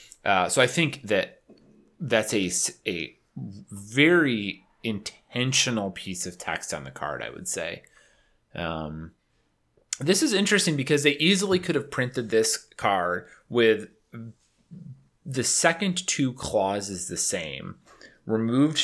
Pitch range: 95-125 Hz